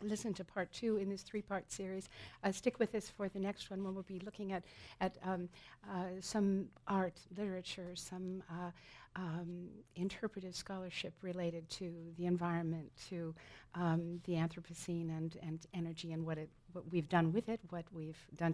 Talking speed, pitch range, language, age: 175 wpm, 160-190 Hz, English, 50-69